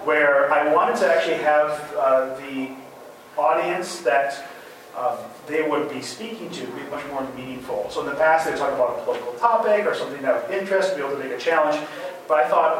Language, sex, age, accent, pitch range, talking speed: English, male, 40-59, American, 140-180 Hz, 210 wpm